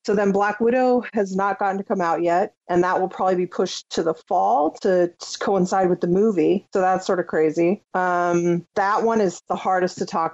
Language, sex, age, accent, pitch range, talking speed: English, female, 40-59, American, 175-205 Hz, 220 wpm